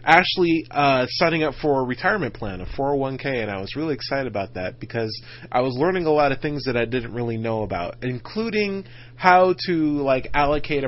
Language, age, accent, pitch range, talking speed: English, 30-49, American, 120-165 Hz, 200 wpm